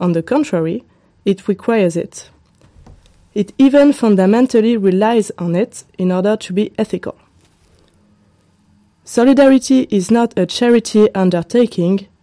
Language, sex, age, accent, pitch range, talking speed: German, female, 20-39, French, 170-225 Hz, 115 wpm